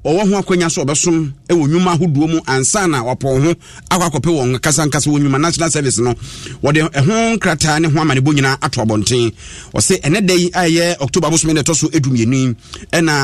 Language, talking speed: English, 180 wpm